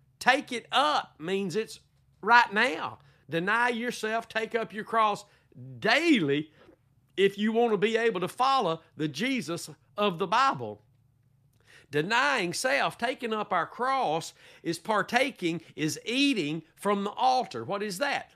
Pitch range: 155-225 Hz